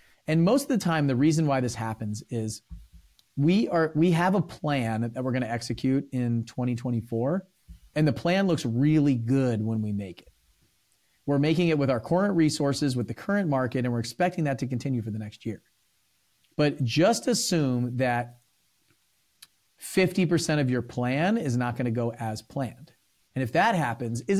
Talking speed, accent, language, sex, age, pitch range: 185 wpm, American, English, male, 40-59, 120-155 Hz